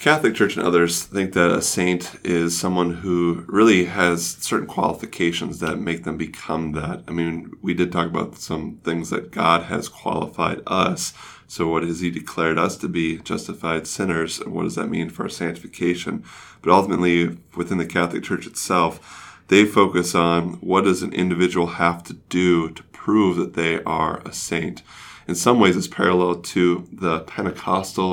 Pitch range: 85-95 Hz